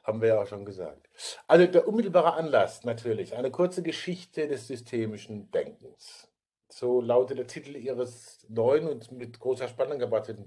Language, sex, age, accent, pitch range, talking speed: German, male, 50-69, German, 120-155 Hz, 160 wpm